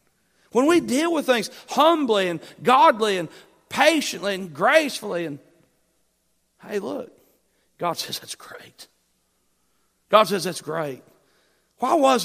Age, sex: 40-59, male